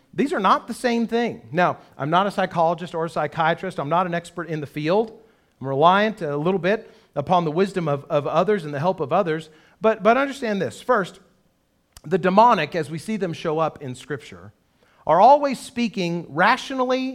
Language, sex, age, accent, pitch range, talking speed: English, male, 40-59, American, 155-215 Hz, 195 wpm